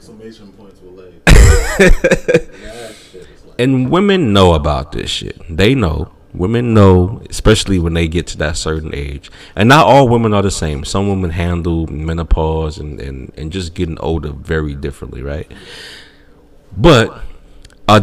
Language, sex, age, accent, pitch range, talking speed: English, male, 30-49, American, 80-120 Hz, 135 wpm